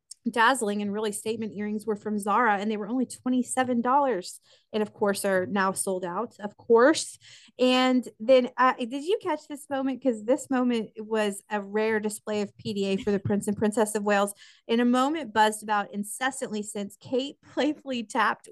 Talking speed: 180 wpm